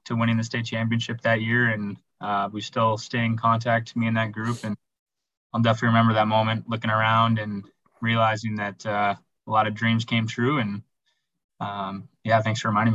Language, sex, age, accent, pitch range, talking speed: English, male, 20-39, American, 110-120 Hz, 195 wpm